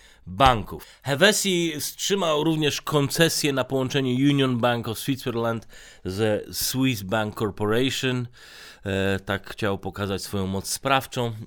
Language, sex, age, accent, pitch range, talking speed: Polish, male, 30-49, native, 95-130 Hz, 115 wpm